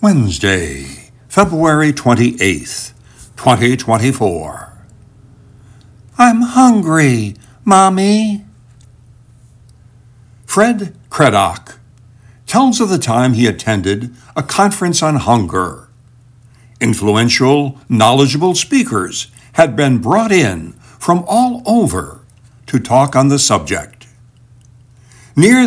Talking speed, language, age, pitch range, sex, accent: 80 wpm, English, 60-79, 120-160 Hz, male, American